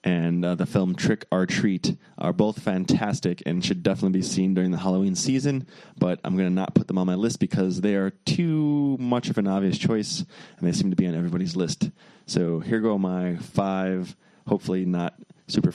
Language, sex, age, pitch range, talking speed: English, male, 20-39, 90-105 Hz, 205 wpm